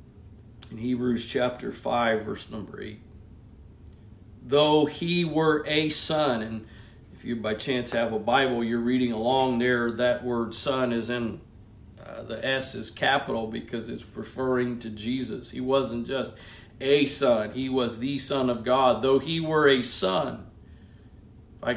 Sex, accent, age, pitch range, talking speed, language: male, American, 40-59, 110-145 Hz, 150 wpm, English